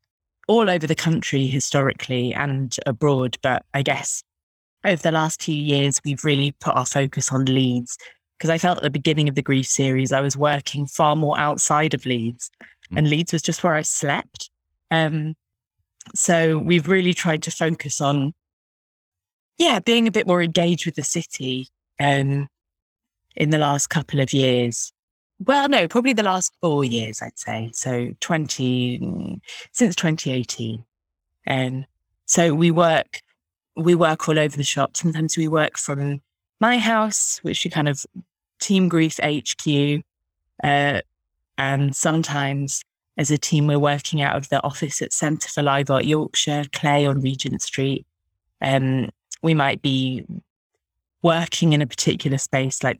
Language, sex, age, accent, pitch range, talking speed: English, female, 20-39, British, 130-165 Hz, 155 wpm